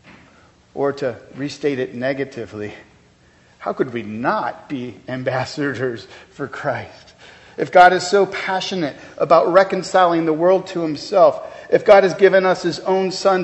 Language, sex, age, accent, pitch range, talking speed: English, male, 40-59, American, 135-180 Hz, 145 wpm